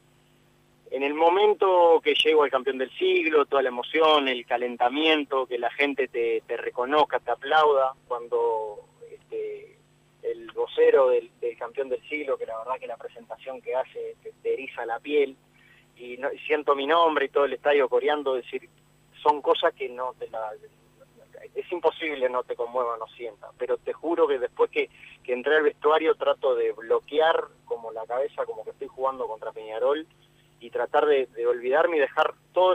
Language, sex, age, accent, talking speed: Spanish, male, 30-49, Argentinian, 185 wpm